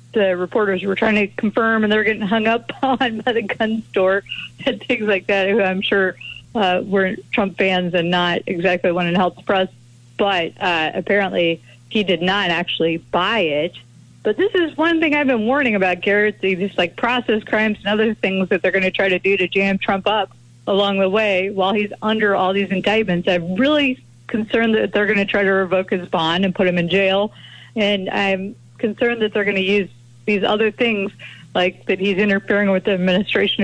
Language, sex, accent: English, female, American